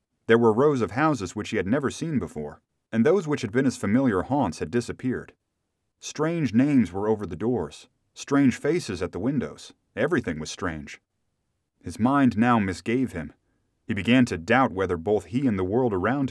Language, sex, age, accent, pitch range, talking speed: English, male, 30-49, American, 95-130 Hz, 190 wpm